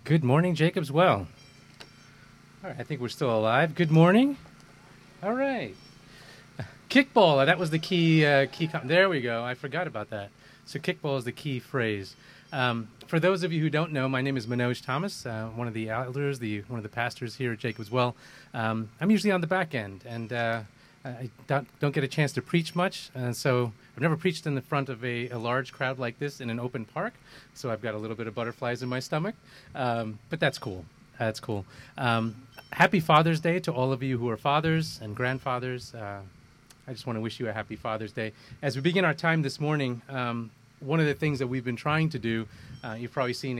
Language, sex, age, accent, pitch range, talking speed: English, male, 30-49, American, 115-155 Hz, 225 wpm